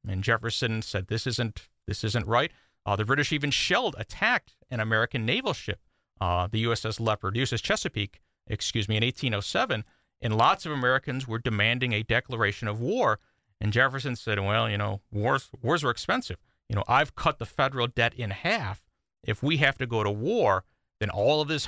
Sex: male